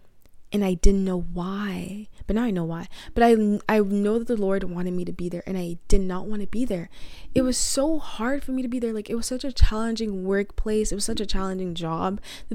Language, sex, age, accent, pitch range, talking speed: English, female, 20-39, American, 185-235 Hz, 255 wpm